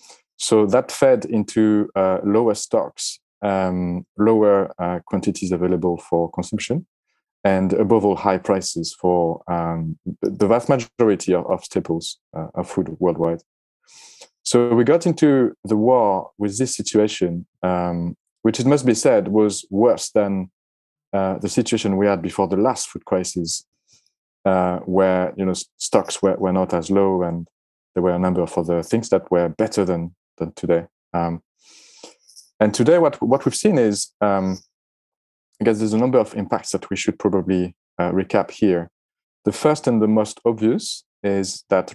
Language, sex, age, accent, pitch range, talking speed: English, male, 30-49, French, 90-110 Hz, 165 wpm